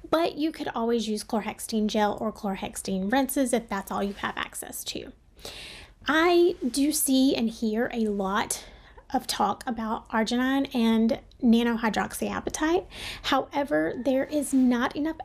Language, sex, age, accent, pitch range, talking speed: English, female, 30-49, American, 220-275 Hz, 140 wpm